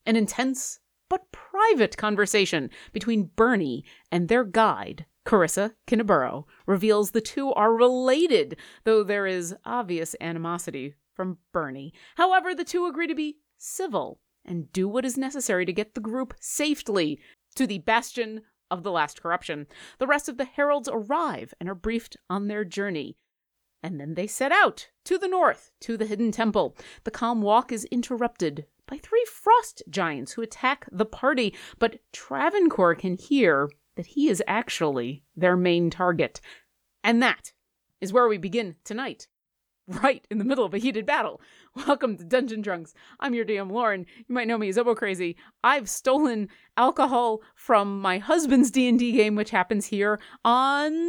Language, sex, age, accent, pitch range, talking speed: English, female, 30-49, American, 190-265 Hz, 160 wpm